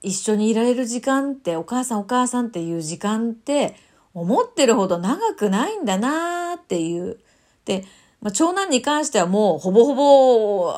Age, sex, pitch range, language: 40-59, female, 190-260 Hz, Japanese